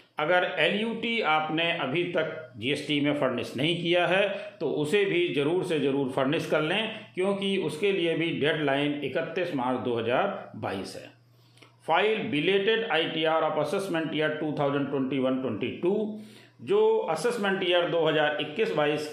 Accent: native